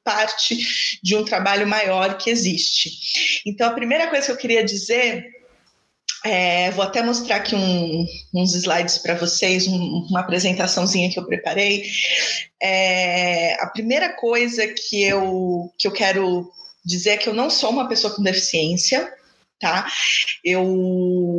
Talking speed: 130 wpm